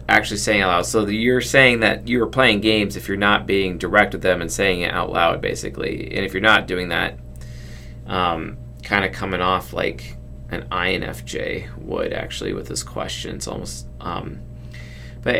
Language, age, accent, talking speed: English, 30-49, American, 190 wpm